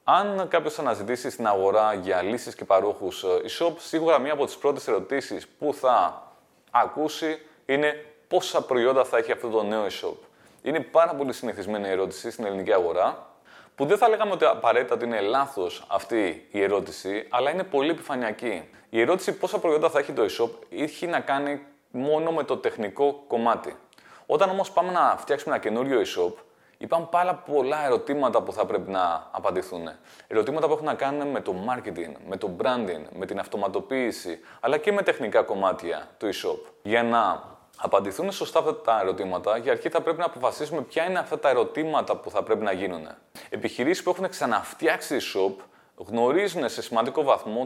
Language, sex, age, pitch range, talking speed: Greek, male, 30-49, 125-195 Hz, 175 wpm